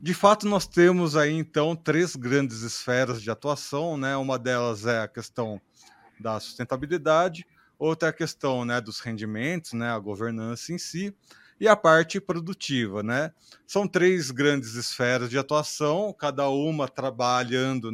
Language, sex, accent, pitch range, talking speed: Portuguese, male, Brazilian, 125-160 Hz, 150 wpm